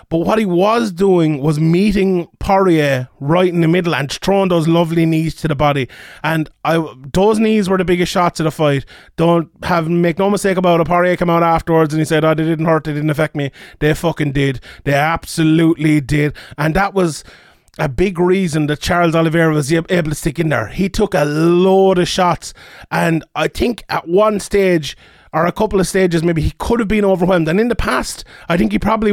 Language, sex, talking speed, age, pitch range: English, male, 215 wpm, 30-49, 160-190 Hz